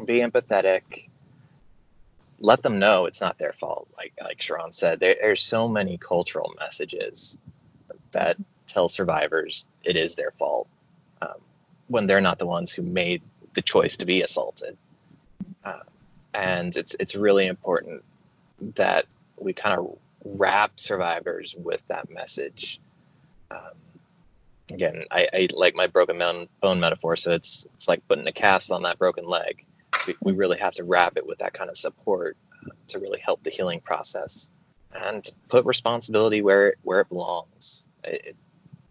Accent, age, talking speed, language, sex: American, 20-39, 160 wpm, English, male